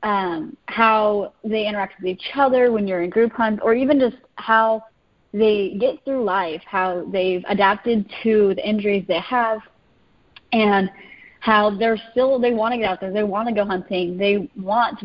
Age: 20-39